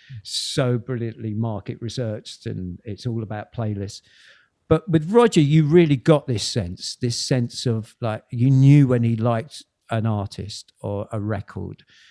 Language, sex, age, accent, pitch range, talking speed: English, male, 50-69, British, 115-150 Hz, 155 wpm